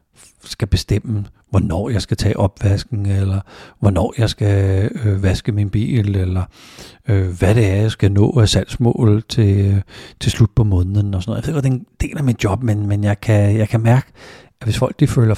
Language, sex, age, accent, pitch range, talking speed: Danish, male, 60-79, native, 95-120 Hz, 205 wpm